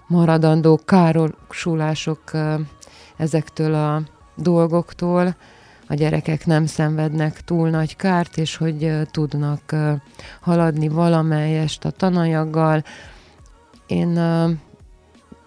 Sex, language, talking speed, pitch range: female, Hungarian, 95 wpm, 150-165 Hz